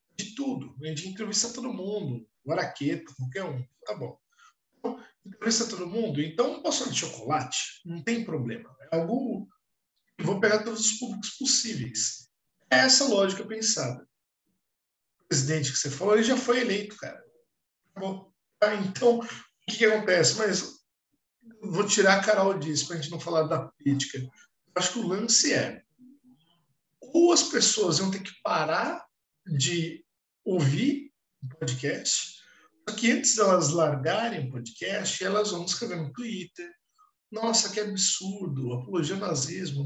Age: 50-69